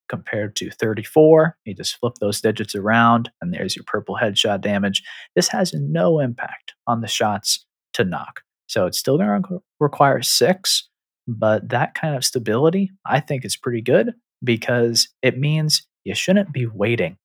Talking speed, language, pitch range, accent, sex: 165 wpm, English, 110-150 Hz, American, male